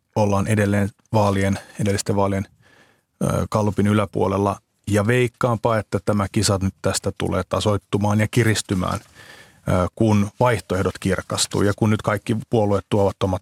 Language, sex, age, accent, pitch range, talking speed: Finnish, male, 30-49, native, 100-120 Hz, 120 wpm